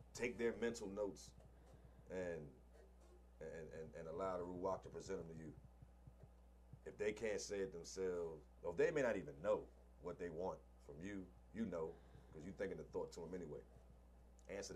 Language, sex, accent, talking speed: English, male, American, 180 wpm